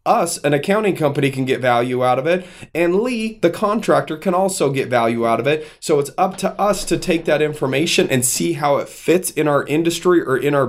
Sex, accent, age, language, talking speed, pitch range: male, American, 30-49, English, 230 wpm, 120-150 Hz